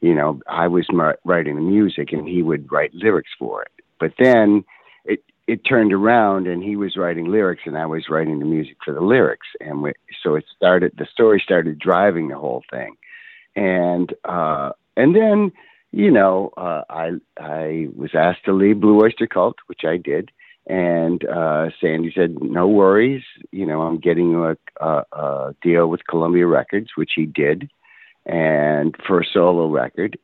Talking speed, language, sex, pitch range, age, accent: 180 wpm, English, male, 80-100 Hz, 60-79, American